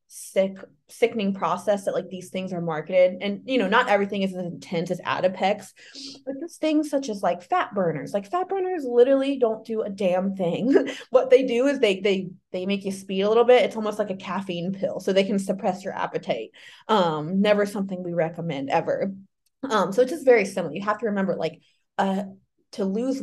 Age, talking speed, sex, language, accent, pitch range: 20-39, 210 wpm, female, English, American, 180-220 Hz